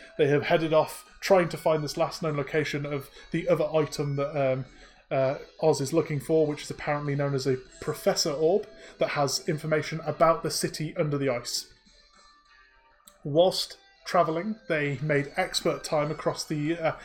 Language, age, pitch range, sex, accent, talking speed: English, 20-39, 145-170 Hz, male, British, 170 wpm